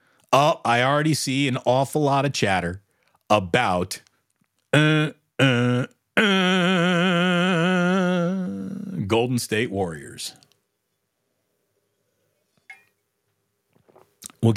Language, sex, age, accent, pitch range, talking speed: English, male, 40-59, American, 105-155 Hz, 70 wpm